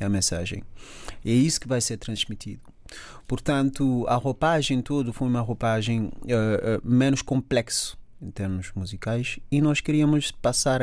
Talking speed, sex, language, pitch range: 140 wpm, male, Portuguese, 110-130 Hz